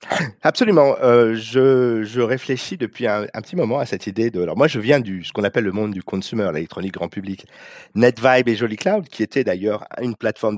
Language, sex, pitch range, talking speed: French, male, 95-130 Hz, 210 wpm